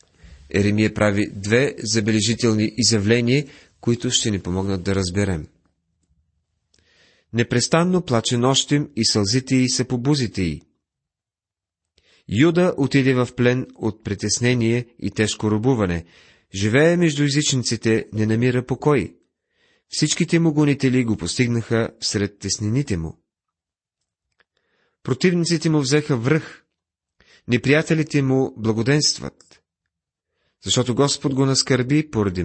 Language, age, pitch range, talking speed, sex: Bulgarian, 30-49, 95-130 Hz, 100 wpm, male